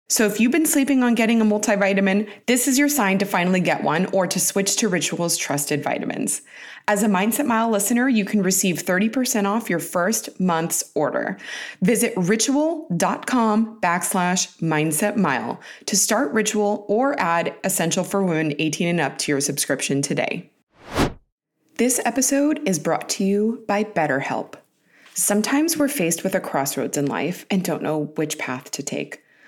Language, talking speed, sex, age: English, 165 wpm, female, 20-39